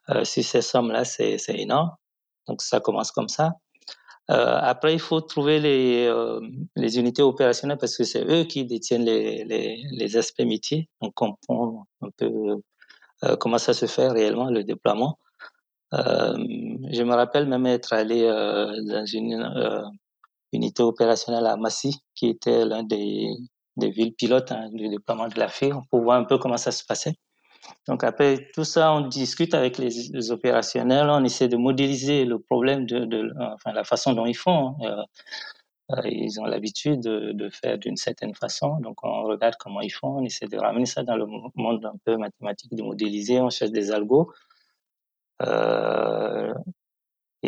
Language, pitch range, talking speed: French, 110-140 Hz, 180 wpm